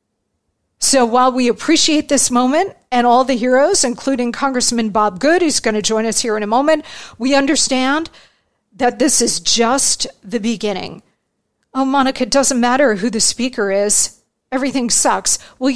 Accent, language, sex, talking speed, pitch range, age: American, English, female, 165 wpm, 240-275 Hz, 50-69